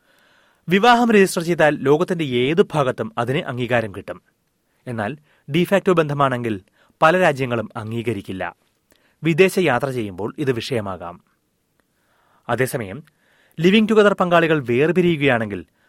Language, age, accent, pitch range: Malayalam, 30-49, native, 120-170 Hz